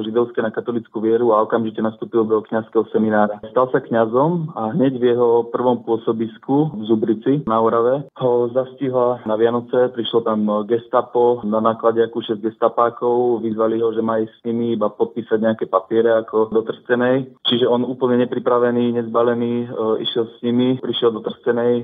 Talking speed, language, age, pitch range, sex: 160 wpm, Slovak, 20-39, 115-120 Hz, male